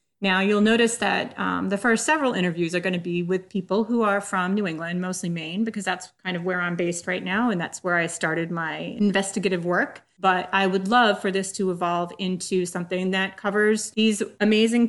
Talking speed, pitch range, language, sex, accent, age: 215 wpm, 185-240 Hz, English, female, American, 30-49